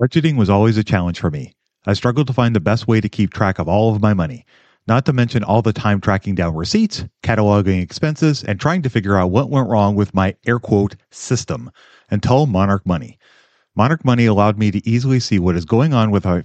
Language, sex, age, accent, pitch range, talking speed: English, male, 40-59, American, 95-125 Hz, 225 wpm